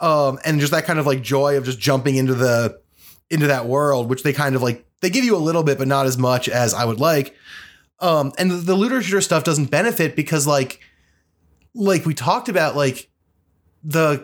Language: English